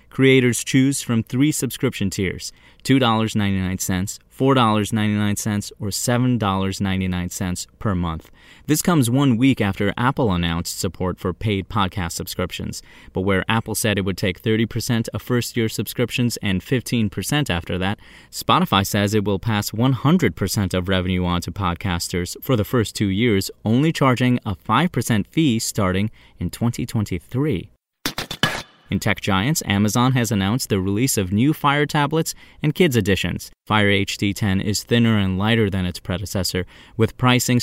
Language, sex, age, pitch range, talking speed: English, male, 30-49, 95-125 Hz, 145 wpm